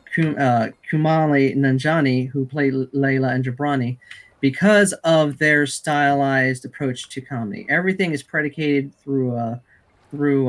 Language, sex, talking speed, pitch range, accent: English, male, 115 wpm, 125-150 Hz, American